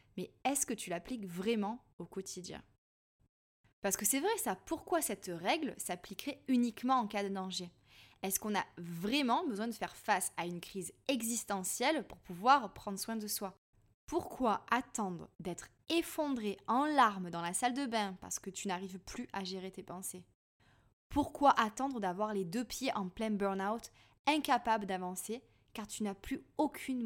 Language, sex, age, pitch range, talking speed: French, female, 20-39, 185-245 Hz, 170 wpm